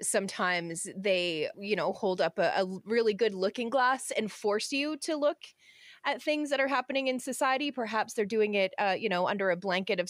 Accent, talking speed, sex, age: American, 210 wpm, female, 30-49